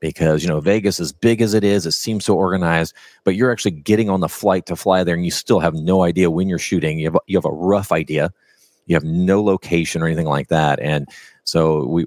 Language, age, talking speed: English, 40-59, 255 wpm